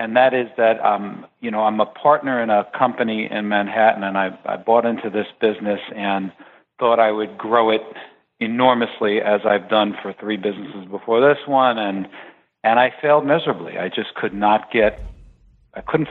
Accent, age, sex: American, 50-69, male